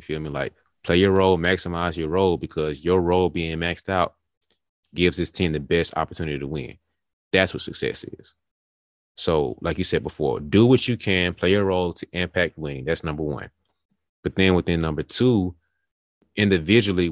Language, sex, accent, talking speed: English, male, American, 180 wpm